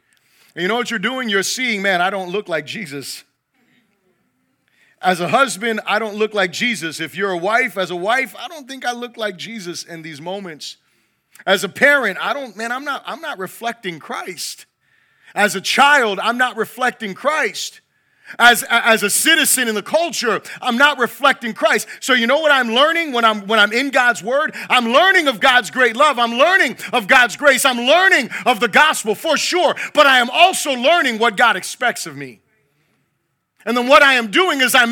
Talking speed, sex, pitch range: 205 wpm, male, 195-270 Hz